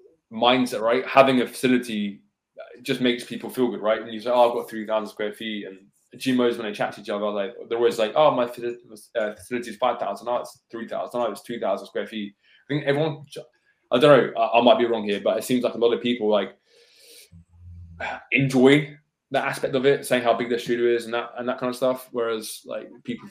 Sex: male